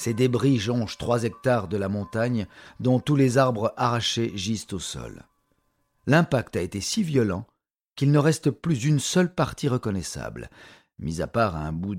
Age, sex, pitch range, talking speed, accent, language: 50-69, male, 100-130 Hz, 170 wpm, French, French